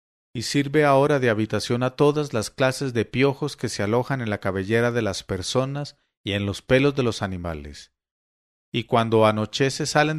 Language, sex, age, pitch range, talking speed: English, male, 40-59, 105-135 Hz, 185 wpm